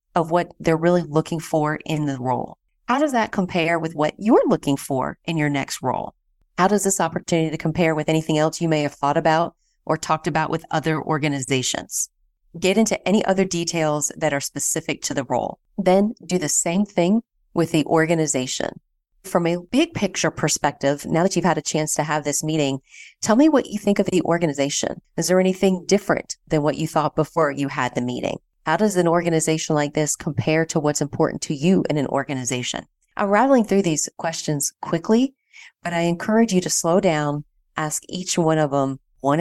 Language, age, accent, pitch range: English, 30-49, American, 150-185 Hz